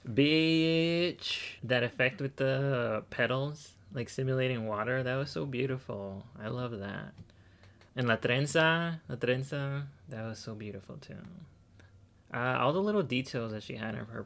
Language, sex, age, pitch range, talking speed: English, male, 20-39, 100-130 Hz, 155 wpm